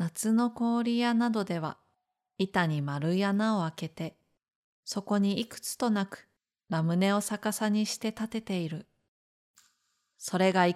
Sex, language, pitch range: female, Japanese, 165-225 Hz